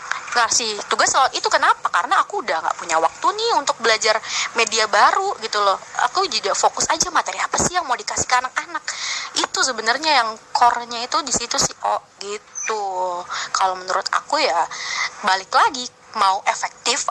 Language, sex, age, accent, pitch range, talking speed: Indonesian, female, 20-39, native, 195-265 Hz, 170 wpm